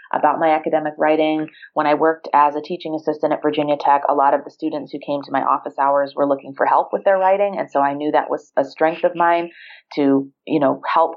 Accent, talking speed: American, 245 wpm